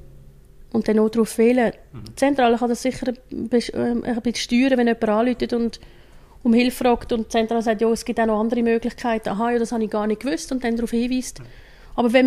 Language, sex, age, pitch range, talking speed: German, female, 30-49, 210-245 Hz, 215 wpm